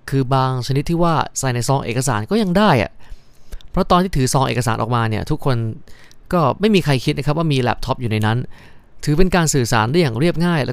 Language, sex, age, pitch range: Thai, male, 20-39, 115-150 Hz